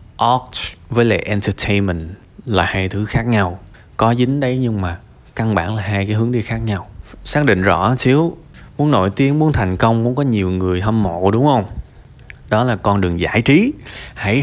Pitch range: 95-125 Hz